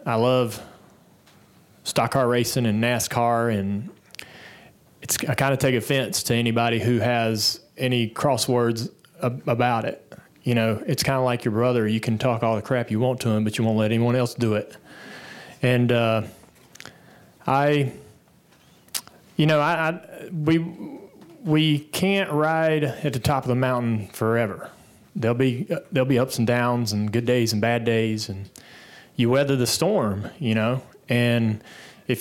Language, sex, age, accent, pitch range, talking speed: English, male, 30-49, American, 110-130 Hz, 165 wpm